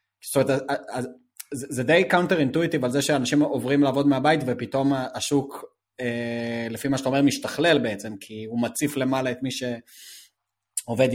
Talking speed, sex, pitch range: 145 wpm, male, 115-140 Hz